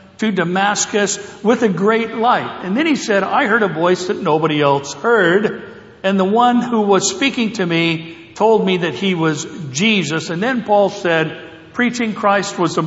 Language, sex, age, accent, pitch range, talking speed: English, male, 60-79, American, 160-210 Hz, 185 wpm